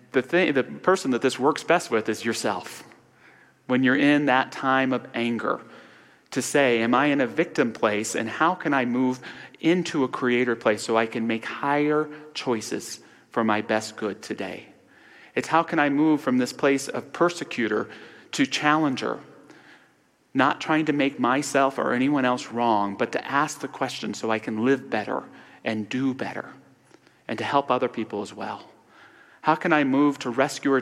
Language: English